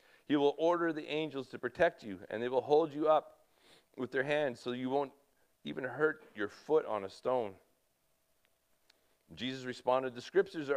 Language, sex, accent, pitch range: English, male, American, 125-180 Hz